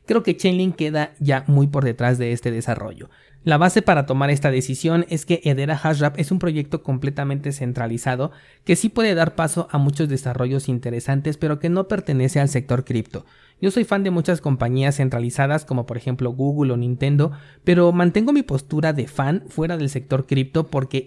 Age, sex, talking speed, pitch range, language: 30-49, male, 190 wpm, 130-165 Hz, Spanish